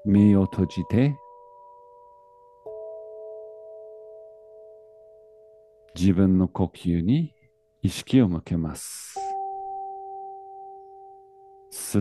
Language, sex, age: Japanese, male, 50-69